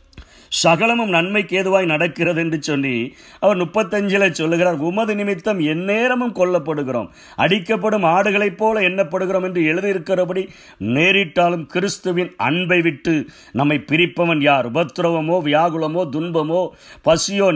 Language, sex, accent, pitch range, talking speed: Tamil, male, native, 135-185 Hz, 105 wpm